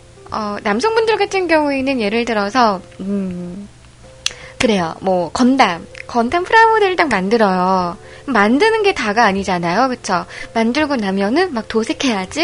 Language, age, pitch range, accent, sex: Korean, 20-39, 205-315 Hz, native, female